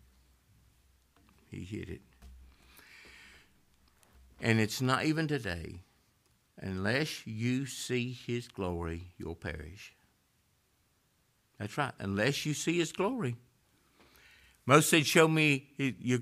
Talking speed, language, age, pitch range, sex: 100 wpm, English, 60-79, 90-150 Hz, male